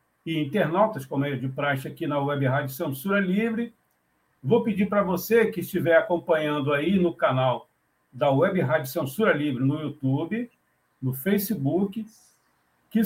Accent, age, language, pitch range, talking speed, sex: Brazilian, 50-69, Portuguese, 140-210 Hz, 150 wpm, male